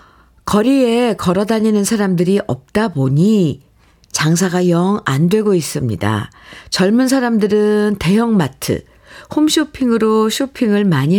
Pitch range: 150-205 Hz